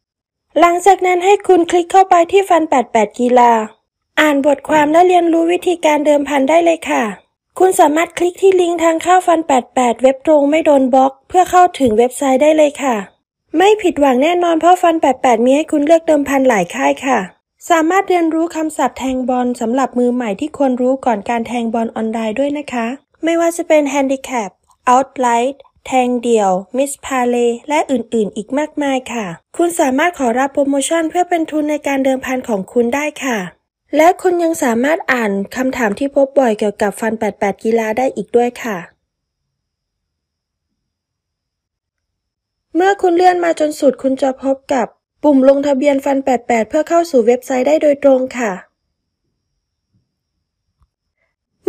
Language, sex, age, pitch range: Thai, female, 20-39, 240-325 Hz